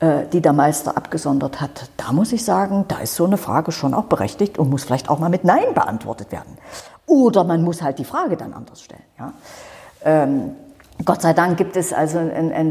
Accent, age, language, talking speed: German, 50-69, German, 210 wpm